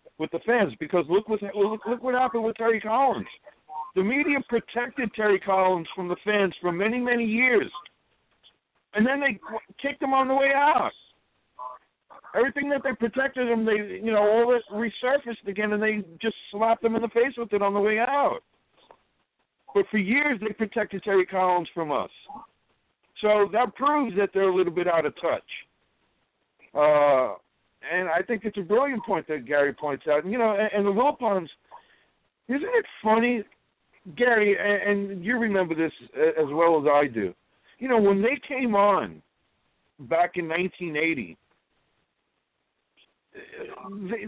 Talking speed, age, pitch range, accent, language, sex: 165 wpm, 60-79, 170-235 Hz, American, English, male